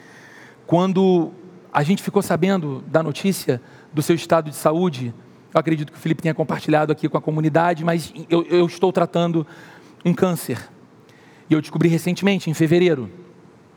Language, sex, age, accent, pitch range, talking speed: Portuguese, male, 40-59, Brazilian, 165-205 Hz, 155 wpm